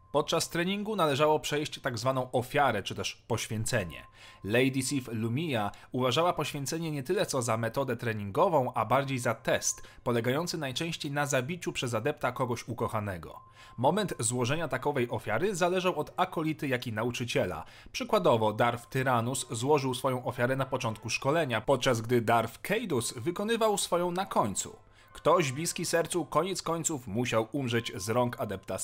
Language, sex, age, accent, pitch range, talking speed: Polish, male, 30-49, native, 115-160 Hz, 145 wpm